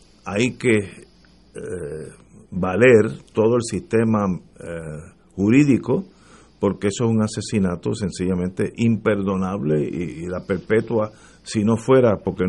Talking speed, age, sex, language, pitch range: 115 wpm, 50-69, male, Spanish, 100-130 Hz